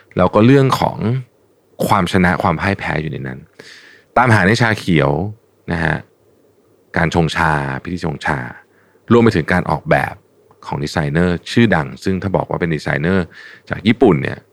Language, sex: Thai, male